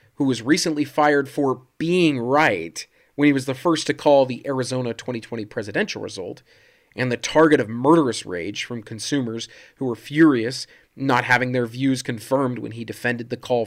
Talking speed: 175 wpm